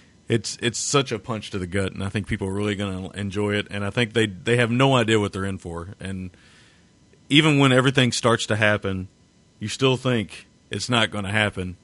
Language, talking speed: English, 230 wpm